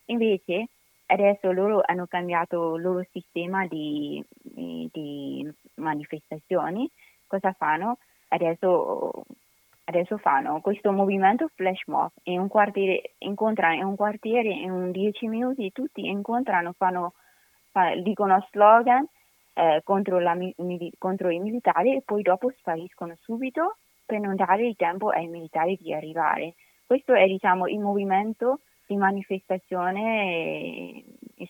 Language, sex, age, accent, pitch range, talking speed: Italian, female, 20-39, native, 170-210 Hz, 115 wpm